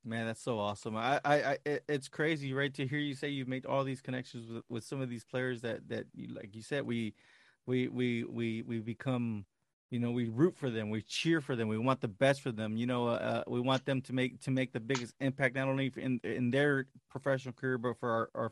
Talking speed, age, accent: 255 wpm, 30-49, American